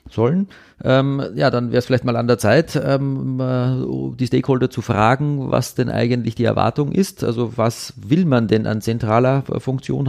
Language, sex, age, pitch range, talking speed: German, male, 40-59, 115-130 Hz, 180 wpm